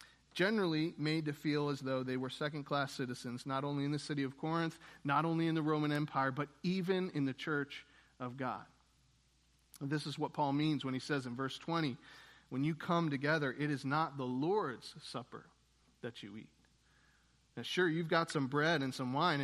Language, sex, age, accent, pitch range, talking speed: English, male, 40-59, American, 140-180 Hz, 195 wpm